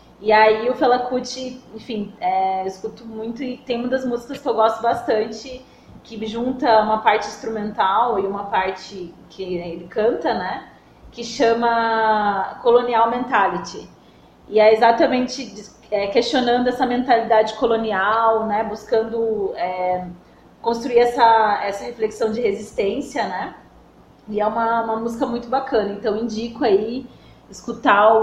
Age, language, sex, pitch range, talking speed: 20-39, Portuguese, female, 210-245 Hz, 130 wpm